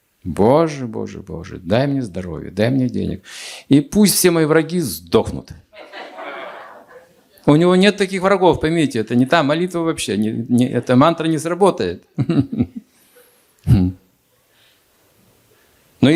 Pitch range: 110-160 Hz